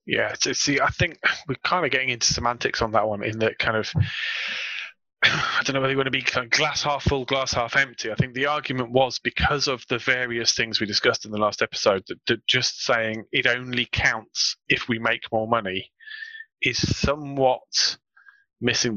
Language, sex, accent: English, male, British